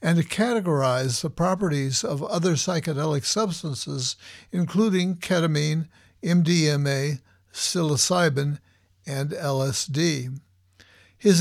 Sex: male